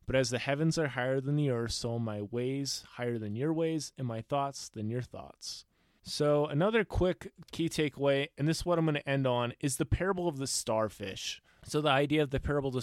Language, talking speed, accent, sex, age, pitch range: English, 230 wpm, American, male, 20-39, 115-145 Hz